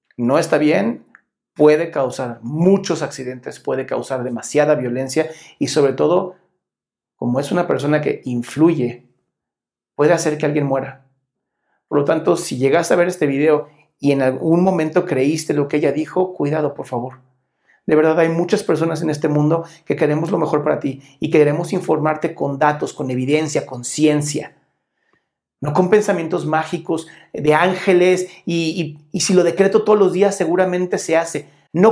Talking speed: 165 wpm